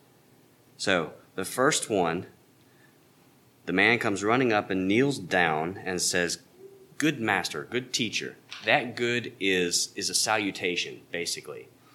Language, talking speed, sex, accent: English, 125 wpm, male, American